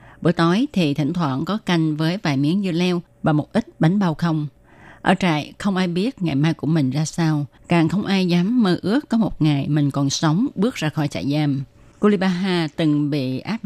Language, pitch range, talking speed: Vietnamese, 145-180 Hz, 220 wpm